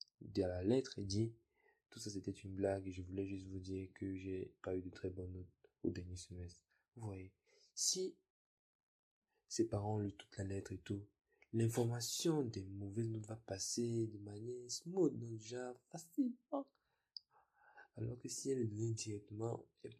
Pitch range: 95-120 Hz